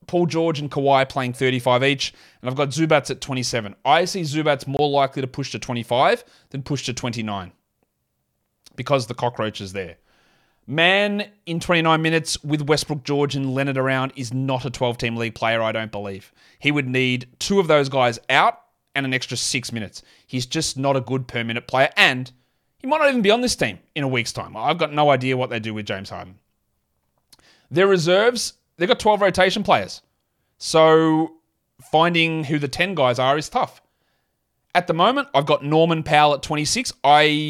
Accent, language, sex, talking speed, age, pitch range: Australian, English, male, 190 wpm, 30-49, 125-160 Hz